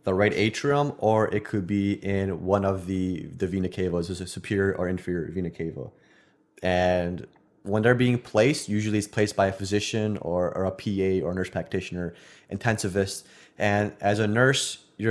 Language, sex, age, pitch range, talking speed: English, male, 20-39, 95-105 Hz, 180 wpm